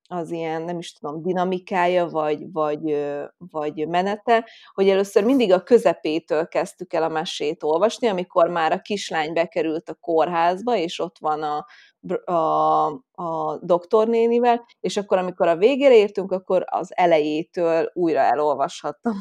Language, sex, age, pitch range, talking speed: Hungarian, female, 30-49, 160-185 Hz, 140 wpm